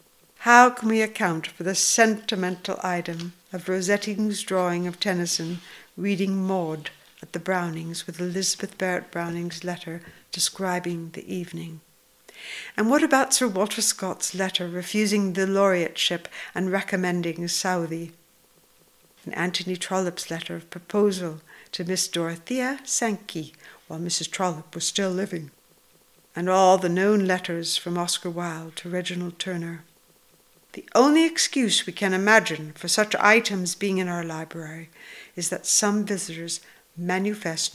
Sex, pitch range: female, 170-205 Hz